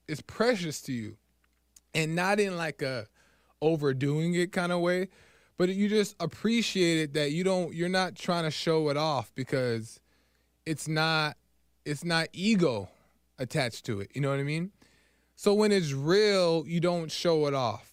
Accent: American